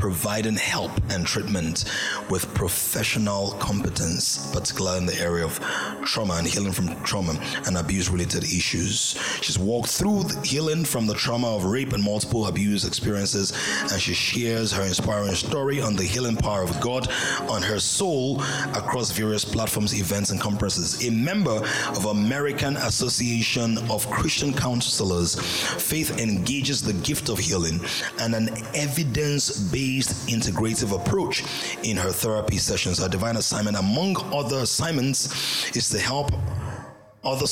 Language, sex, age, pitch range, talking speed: English, male, 30-49, 95-120 Hz, 140 wpm